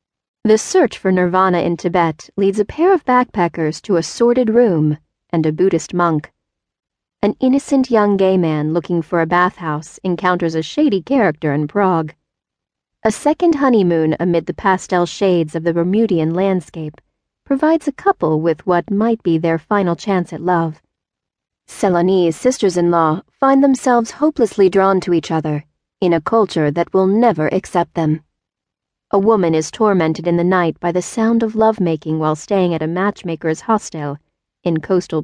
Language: English